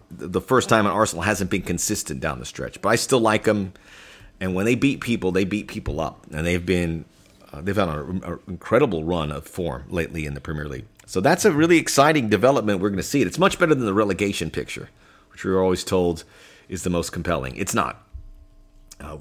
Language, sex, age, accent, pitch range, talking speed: English, male, 40-59, American, 90-115 Hz, 220 wpm